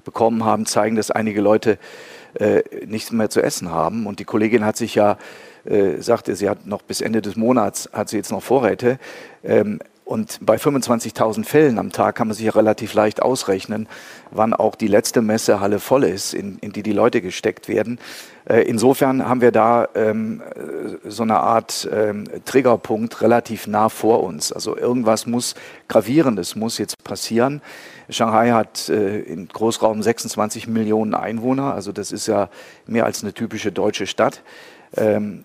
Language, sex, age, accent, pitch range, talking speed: German, male, 40-59, German, 105-120 Hz, 170 wpm